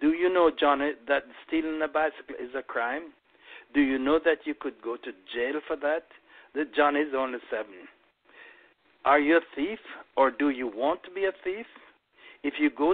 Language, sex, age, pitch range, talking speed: English, male, 60-79, 145-195 Hz, 195 wpm